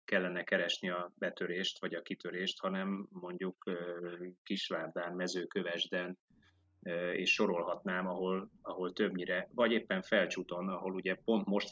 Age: 30-49